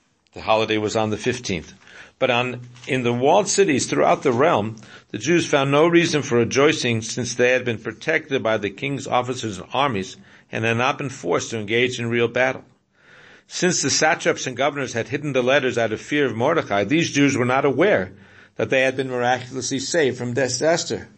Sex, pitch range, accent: male, 110-145 Hz, American